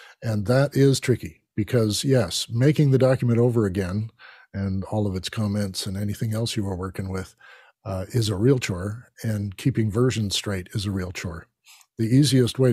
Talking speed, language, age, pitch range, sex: 185 wpm, English, 50-69, 100-125 Hz, male